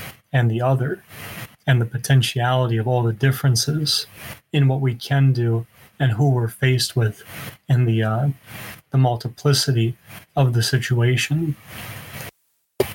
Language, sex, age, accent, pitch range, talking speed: English, male, 30-49, American, 115-135 Hz, 130 wpm